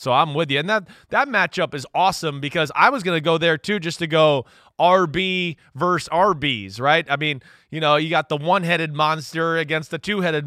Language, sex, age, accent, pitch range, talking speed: English, male, 20-39, American, 140-175 Hz, 210 wpm